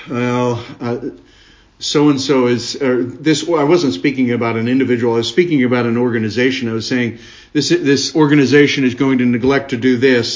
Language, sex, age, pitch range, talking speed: English, male, 50-69, 120-145 Hz, 185 wpm